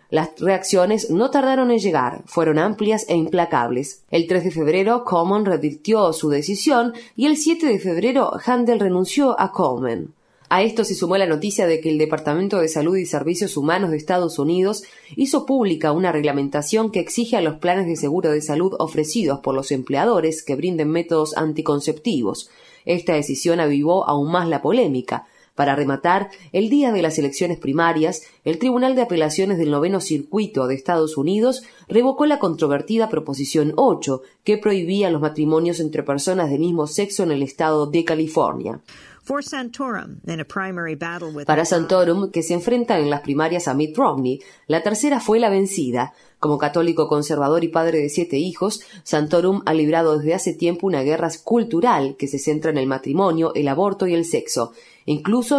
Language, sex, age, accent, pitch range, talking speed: Spanish, female, 20-39, Argentinian, 155-195 Hz, 165 wpm